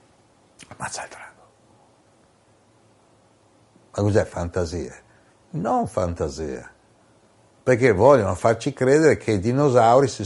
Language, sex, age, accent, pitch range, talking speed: Italian, male, 60-79, native, 100-120 Hz, 95 wpm